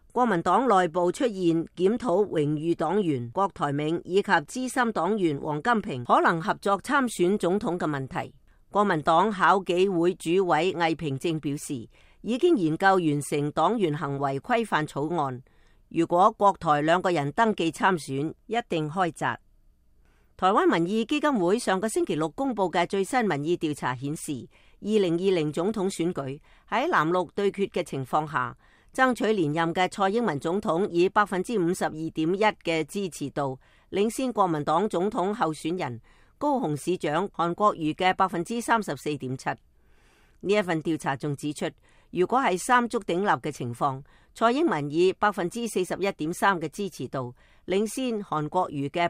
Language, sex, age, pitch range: English, female, 40-59, 150-205 Hz